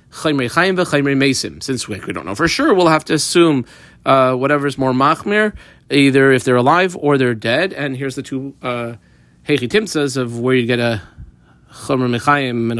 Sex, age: male, 30-49